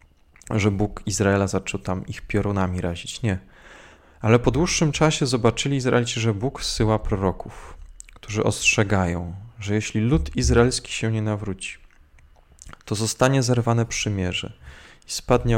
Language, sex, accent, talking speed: Polish, male, native, 130 wpm